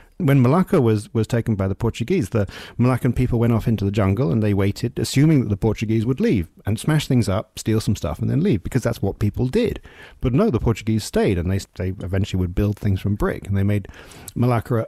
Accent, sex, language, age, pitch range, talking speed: British, male, English, 40-59, 100-135 Hz, 235 wpm